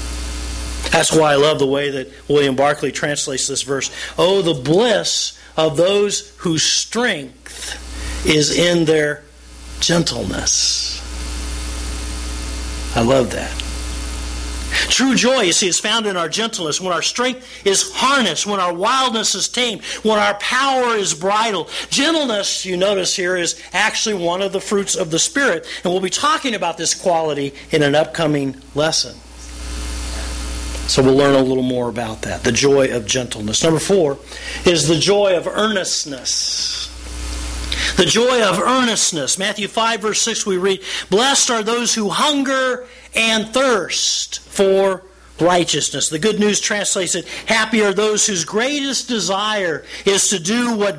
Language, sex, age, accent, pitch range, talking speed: English, male, 50-69, American, 130-220 Hz, 150 wpm